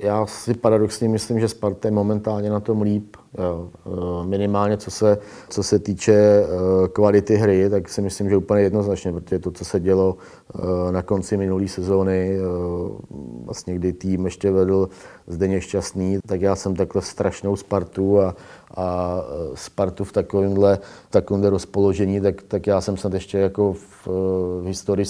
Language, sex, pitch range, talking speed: Czech, male, 95-100 Hz, 155 wpm